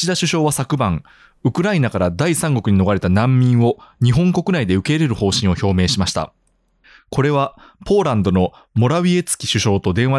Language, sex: Japanese, male